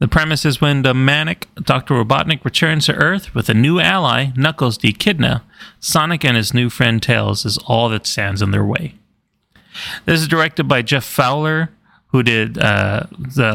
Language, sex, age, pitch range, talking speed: English, male, 30-49, 110-150 Hz, 180 wpm